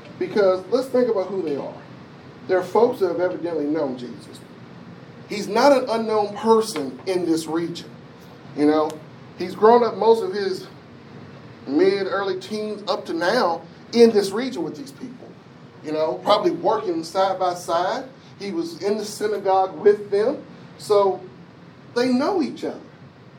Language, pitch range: English, 180-235 Hz